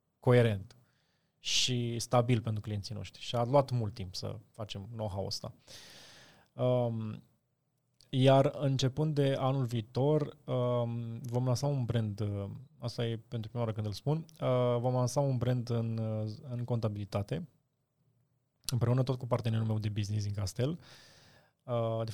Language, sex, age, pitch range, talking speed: Romanian, male, 20-39, 115-135 Hz, 135 wpm